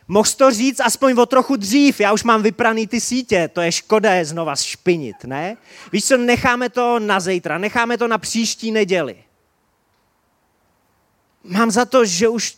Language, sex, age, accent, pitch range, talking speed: Czech, male, 30-49, native, 140-220 Hz, 165 wpm